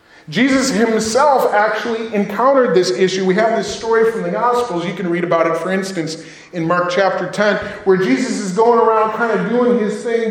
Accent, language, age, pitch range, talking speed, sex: American, English, 30-49, 175-240 Hz, 200 wpm, male